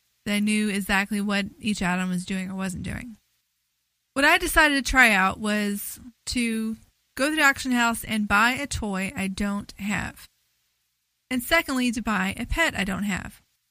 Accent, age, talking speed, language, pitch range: American, 20-39, 180 wpm, English, 195-245 Hz